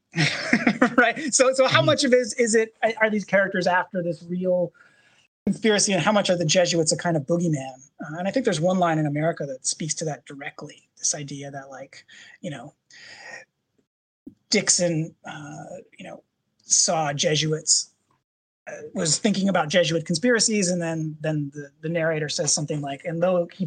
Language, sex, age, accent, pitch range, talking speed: English, male, 30-49, American, 150-190 Hz, 180 wpm